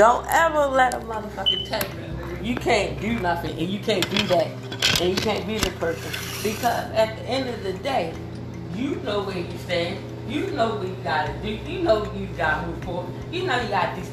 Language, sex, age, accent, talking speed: English, female, 30-49, American, 225 wpm